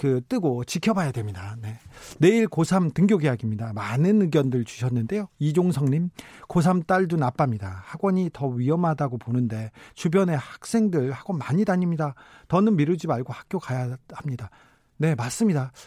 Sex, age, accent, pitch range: male, 40-59, native, 130-180 Hz